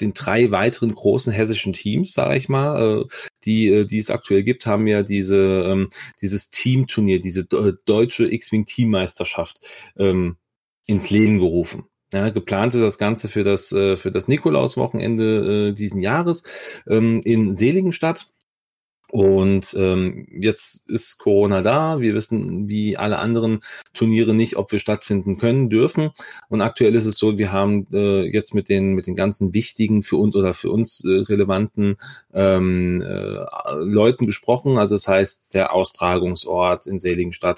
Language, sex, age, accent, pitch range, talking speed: German, male, 30-49, German, 95-110 Hz, 150 wpm